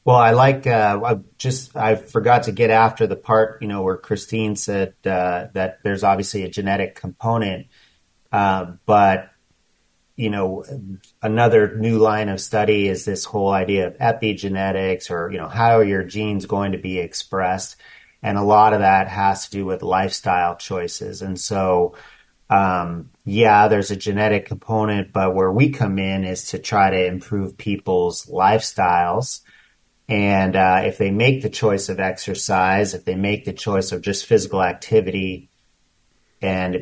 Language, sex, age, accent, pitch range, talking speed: English, male, 40-59, American, 95-110 Hz, 165 wpm